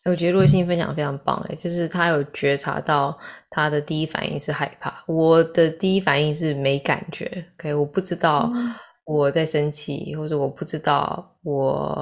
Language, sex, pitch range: Chinese, female, 145-175 Hz